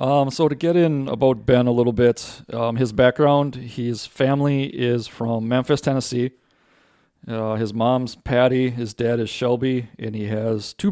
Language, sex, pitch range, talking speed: English, male, 110-130 Hz, 170 wpm